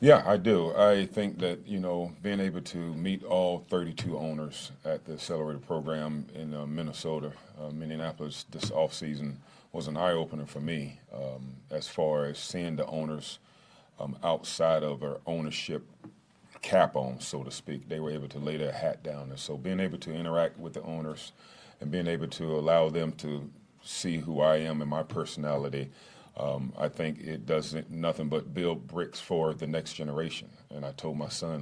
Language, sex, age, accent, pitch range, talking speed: English, male, 40-59, American, 70-80 Hz, 190 wpm